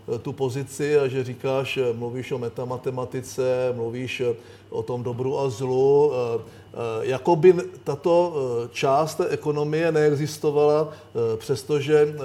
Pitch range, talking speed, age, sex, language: 130-150 Hz, 100 wpm, 50-69, male, Czech